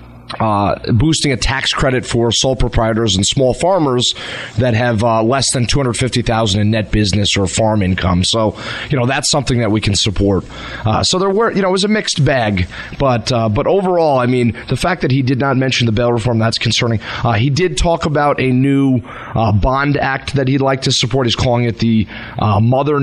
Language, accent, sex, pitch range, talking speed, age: English, American, male, 110-140 Hz, 235 wpm, 30-49